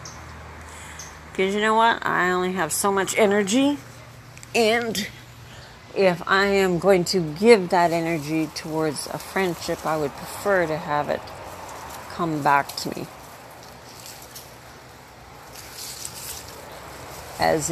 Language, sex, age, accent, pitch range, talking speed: English, female, 50-69, American, 145-195 Hz, 110 wpm